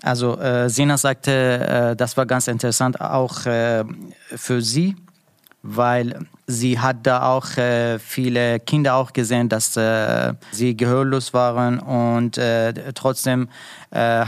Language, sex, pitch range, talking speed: German, male, 120-135 Hz, 130 wpm